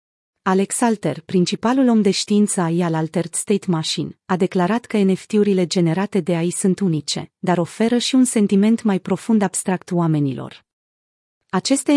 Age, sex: 30-49, female